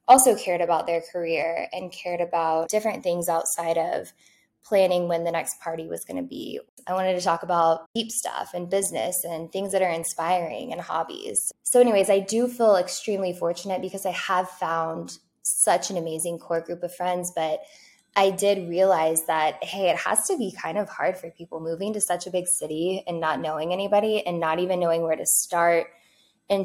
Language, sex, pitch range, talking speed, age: English, female, 165-195 Hz, 200 wpm, 10-29